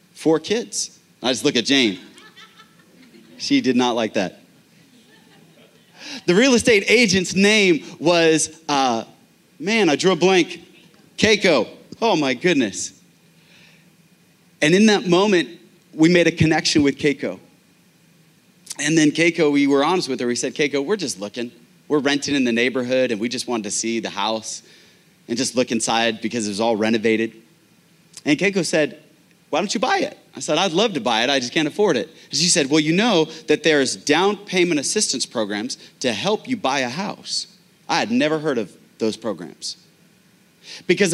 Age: 30-49